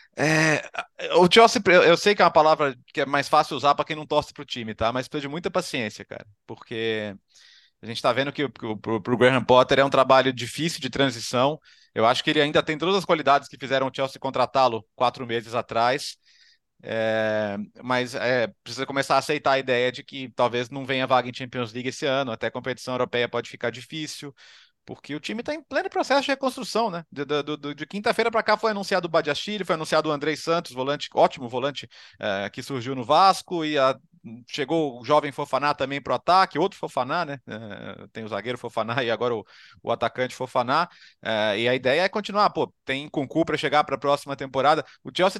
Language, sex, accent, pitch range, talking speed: Portuguese, male, Brazilian, 125-170 Hz, 215 wpm